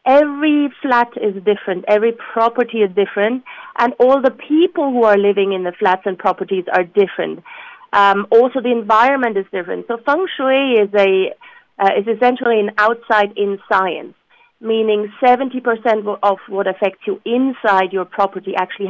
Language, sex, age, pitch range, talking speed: English, female, 40-59, 200-240 Hz, 160 wpm